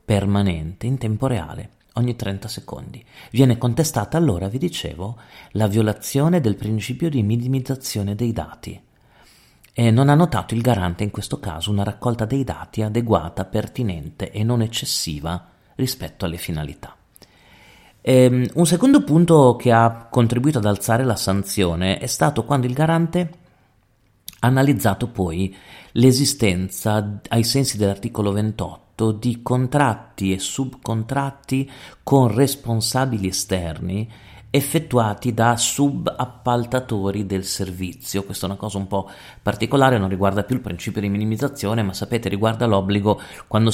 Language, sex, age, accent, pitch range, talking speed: Italian, male, 40-59, native, 100-125 Hz, 130 wpm